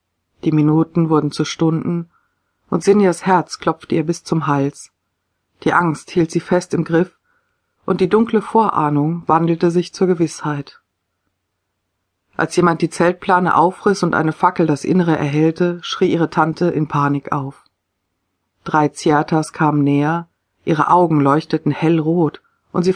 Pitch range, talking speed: 145-170 Hz, 145 wpm